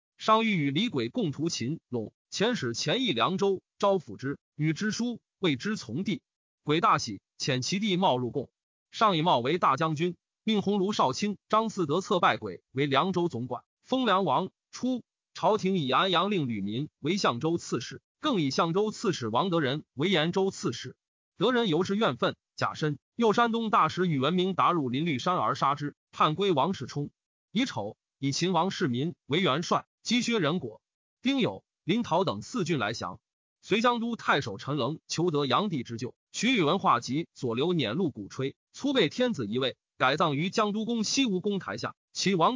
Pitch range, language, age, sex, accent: 145-210 Hz, Chinese, 30-49, male, native